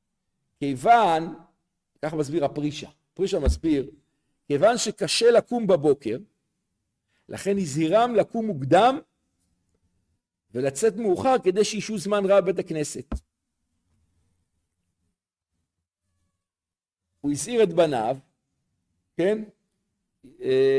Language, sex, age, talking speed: Hebrew, male, 50-69, 80 wpm